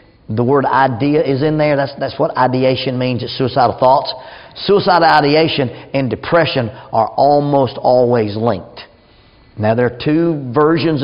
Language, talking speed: English, 145 wpm